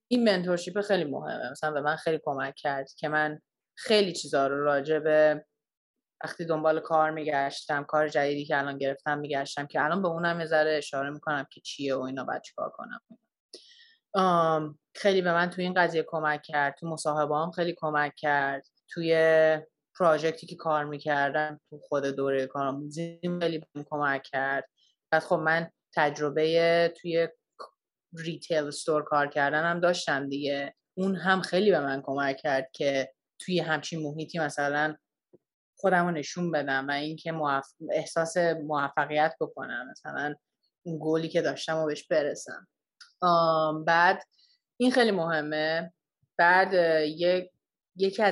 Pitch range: 145-175 Hz